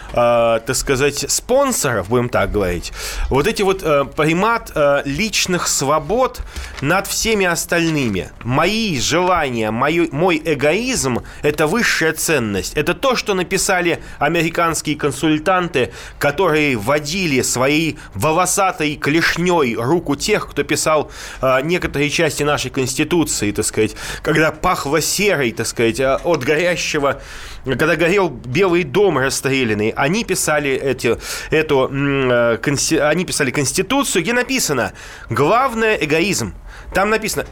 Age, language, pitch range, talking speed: 20-39, Russian, 135-185 Hz, 110 wpm